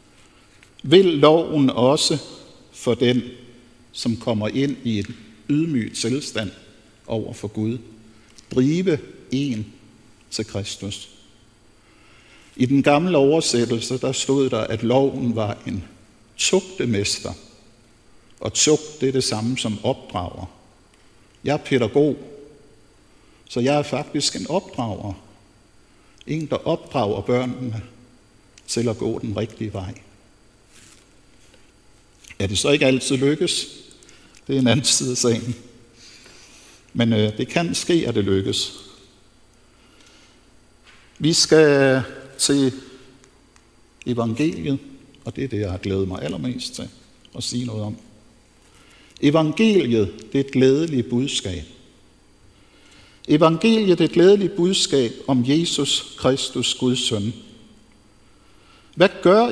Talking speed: 115 wpm